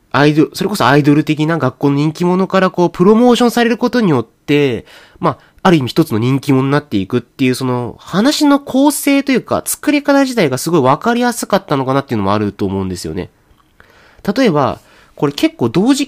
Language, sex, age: Japanese, male, 30-49